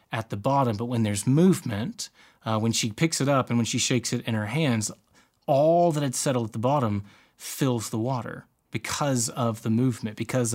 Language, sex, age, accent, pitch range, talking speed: English, male, 30-49, American, 120-155 Hz, 205 wpm